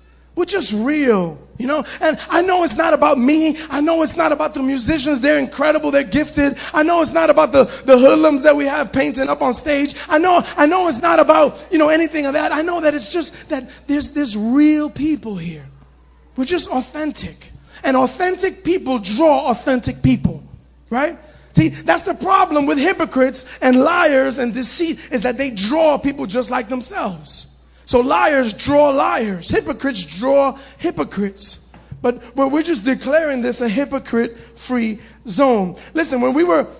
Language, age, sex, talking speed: English, 30-49, male, 175 wpm